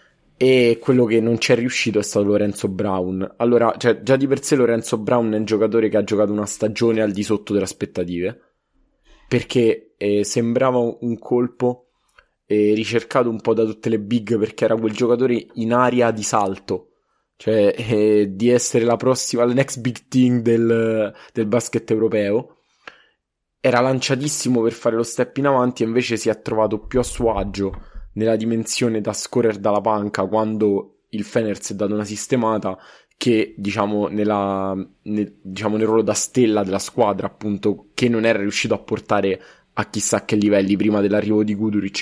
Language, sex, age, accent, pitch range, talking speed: Italian, male, 20-39, native, 105-120 Hz, 175 wpm